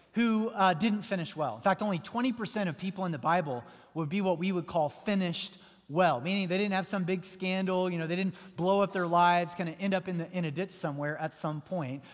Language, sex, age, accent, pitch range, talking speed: English, male, 30-49, American, 165-210 Hz, 245 wpm